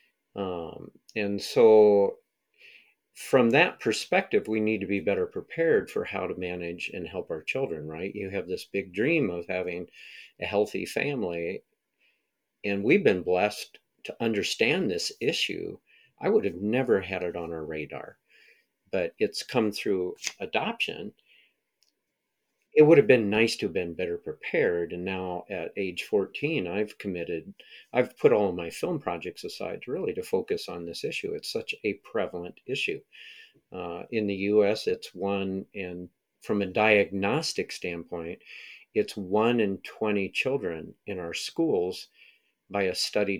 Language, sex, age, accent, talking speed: English, male, 50-69, American, 155 wpm